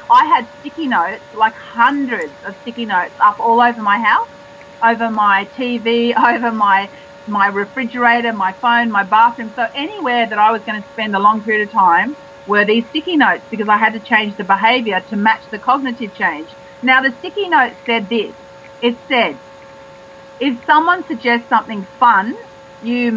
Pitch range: 210-255 Hz